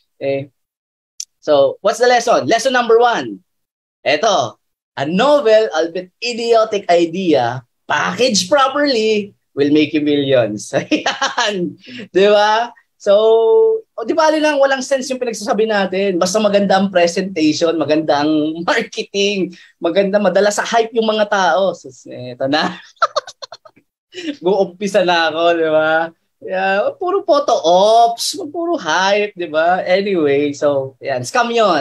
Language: Filipino